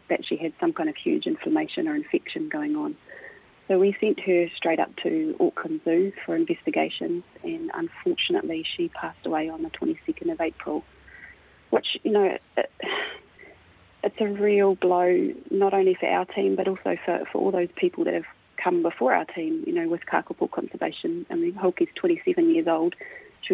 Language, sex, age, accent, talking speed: English, female, 30-49, Australian, 180 wpm